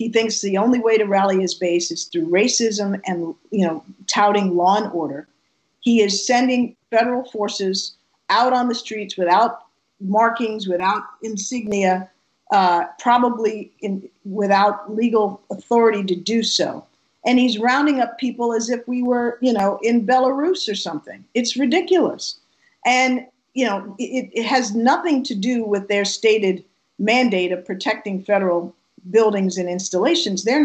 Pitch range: 200-255 Hz